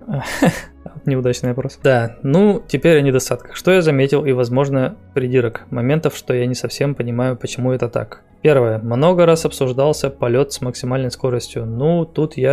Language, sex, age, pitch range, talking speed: Russian, male, 20-39, 120-140 Hz, 160 wpm